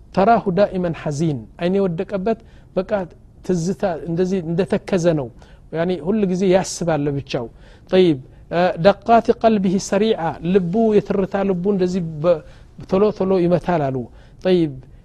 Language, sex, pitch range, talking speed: Amharic, male, 165-210 Hz, 95 wpm